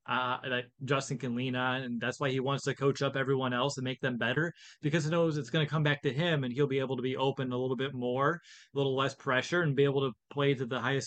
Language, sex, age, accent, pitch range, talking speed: English, male, 20-39, American, 125-145 Hz, 285 wpm